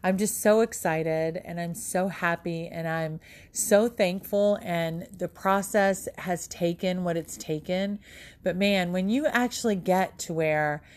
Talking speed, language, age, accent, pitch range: 155 wpm, English, 30-49, American, 160-205 Hz